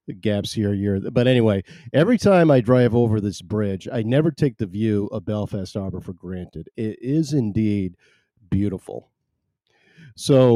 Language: English